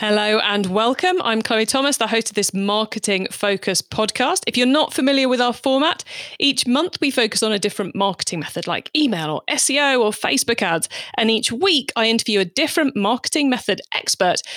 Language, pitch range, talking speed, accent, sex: English, 205-275 Hz, 190 wpm, British, female